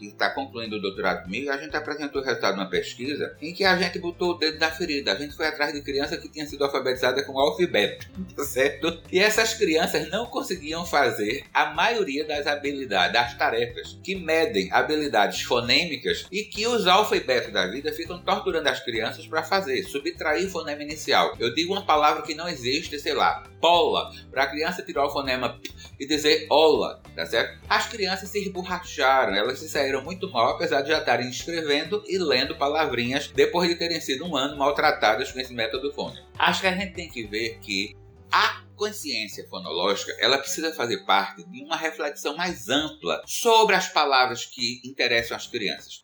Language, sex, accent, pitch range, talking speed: Portuguese, male, Brazilian, 135-185 Hz, 185 wpm